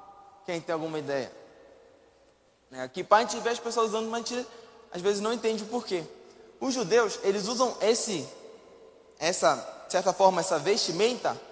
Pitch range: 200-265 Hz